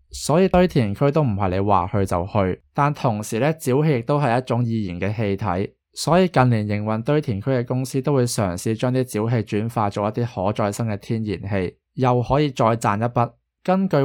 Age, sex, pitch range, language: 20-39, male, 105-135 Hz, Chinese